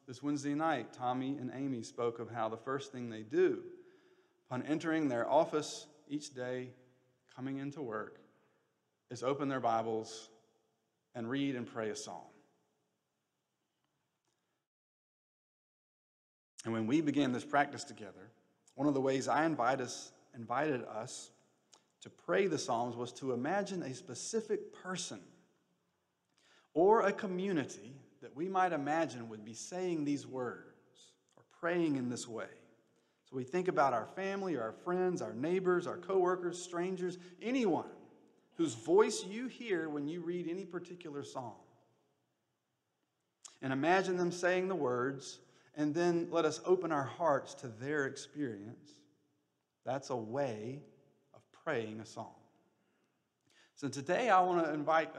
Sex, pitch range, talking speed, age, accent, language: male, 125-180 Hz, 140 wpm, 40-59, American, English